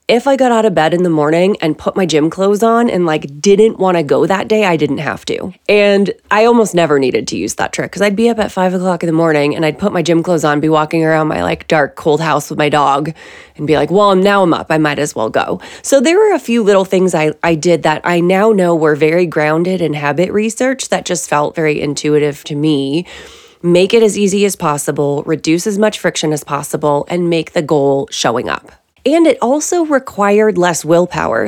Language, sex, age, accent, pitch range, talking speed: English, female, 20-39, American, 155-210 Hz, 240 wpm